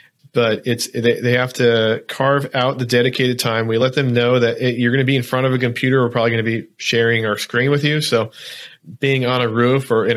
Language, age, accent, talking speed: English, 40-59, American, 255 wpm